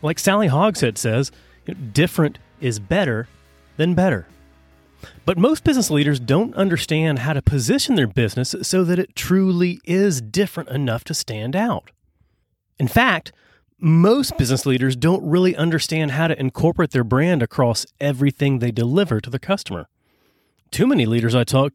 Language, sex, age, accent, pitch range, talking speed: English, male, 30-49, American, 120-175 Hz, 150 wpm